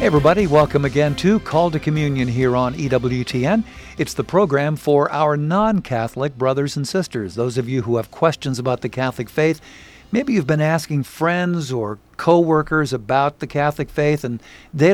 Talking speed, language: 175 wpm, English